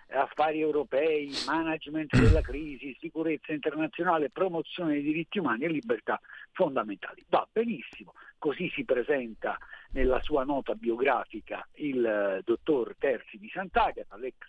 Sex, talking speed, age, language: male, 120 wpm, 50-69, Italian